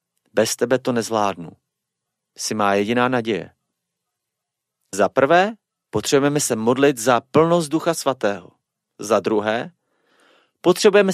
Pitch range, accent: 120-175 Hz, native